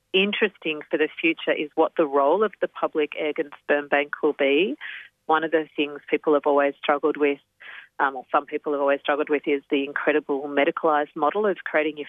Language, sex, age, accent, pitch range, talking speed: English, female, 40-59, Australian, 145-170 Hz, 210 wpm